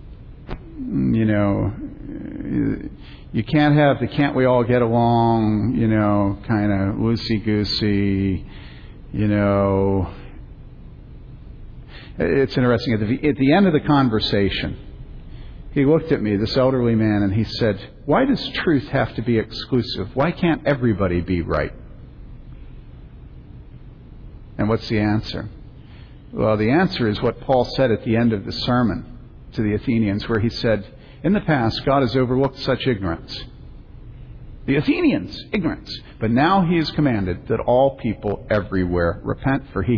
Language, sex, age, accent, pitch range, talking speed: English, male, 50-69, American, 105-135 Hz, 140 wpm